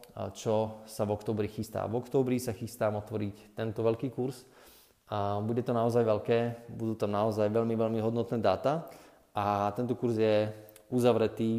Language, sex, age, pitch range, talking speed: Slovak, male, 20-39, 105-120 Hz, 155 wpm